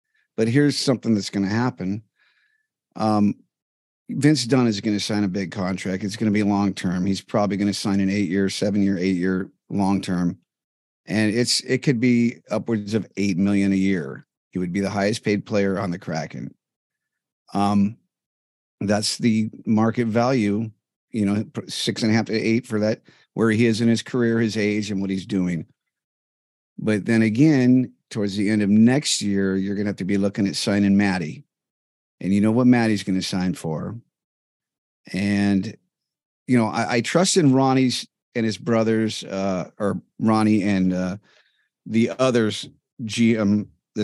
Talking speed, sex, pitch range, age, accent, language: 180 wpm, male, 100-115 Hz, 50-69, American, English